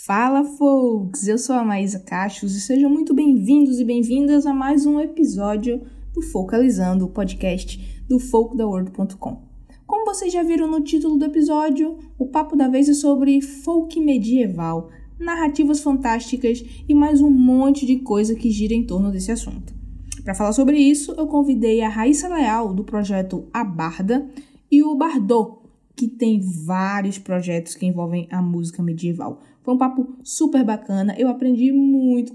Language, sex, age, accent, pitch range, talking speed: Portuguese, female, 10-29, Brazilian, 205-285 Hz, 160 wpm